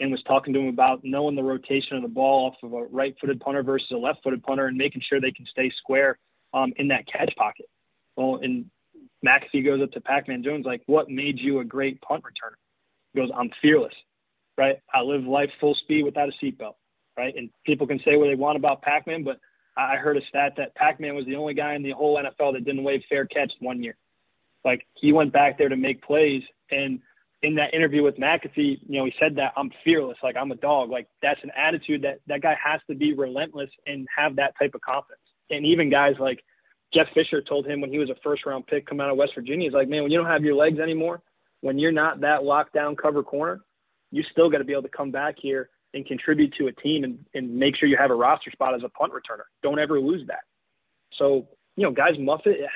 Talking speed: 240 wpm